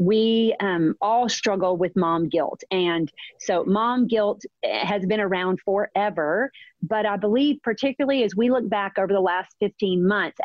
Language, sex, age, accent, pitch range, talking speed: English, female, 40-59, American, 190-245 Hz, 160 wpm